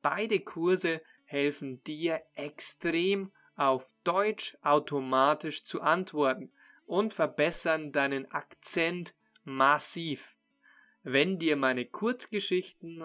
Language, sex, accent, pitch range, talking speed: German, male, German, 145-185 Hz, 85 wpm